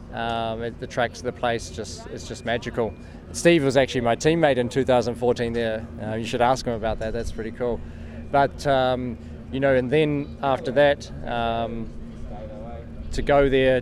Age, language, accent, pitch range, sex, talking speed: 20-39, English, Australian, 120-145 Hz, male, 175 wpm